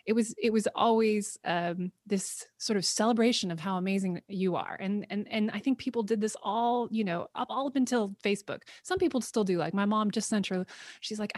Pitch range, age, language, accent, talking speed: 180-230 Hz, 20-39, English, American, 225 wpm